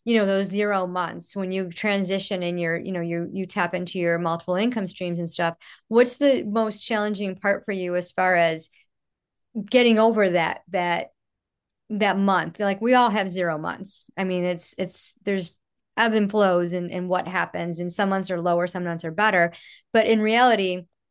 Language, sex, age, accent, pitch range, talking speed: English, male, 30-49, American, 175-210 Hz, 195 wpm